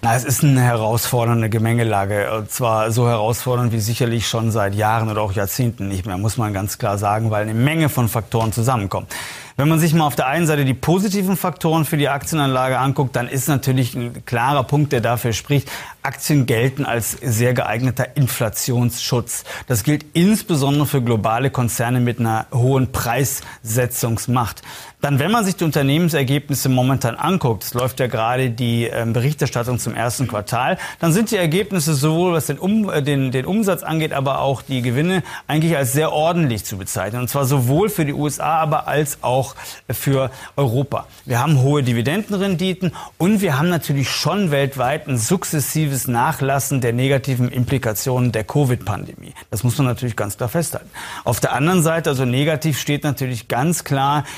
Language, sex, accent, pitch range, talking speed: German, male, German, 120-150 Hz, 170 wpm